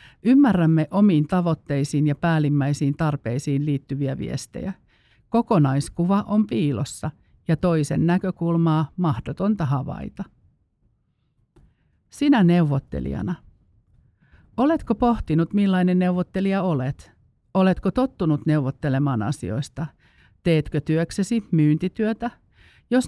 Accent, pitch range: native, 145-185 Hz